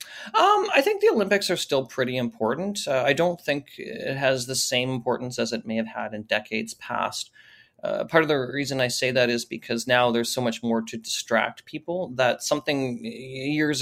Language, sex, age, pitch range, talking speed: English, male, 30-49, 115-135 Hz, 205 wpm